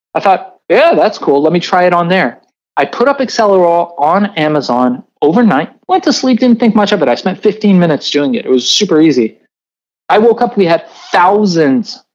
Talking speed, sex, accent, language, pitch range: 210 wpm, male, American, English, 150-215 Hz